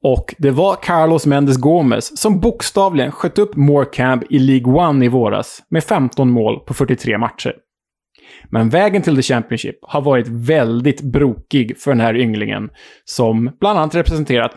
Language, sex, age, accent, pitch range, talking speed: Swedish, male, 20-39, Norwegian, 120-150 Hz, 160 wpm